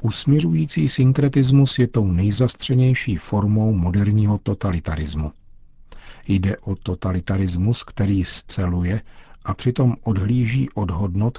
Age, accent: 50-69, native